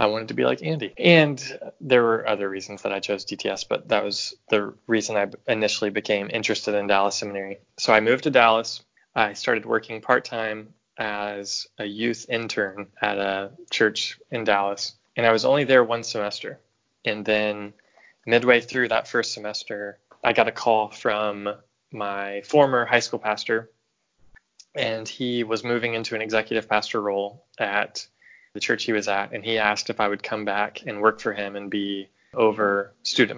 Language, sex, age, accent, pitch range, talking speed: English, male, 20-39, American, 100-115 Hz, 180 wpm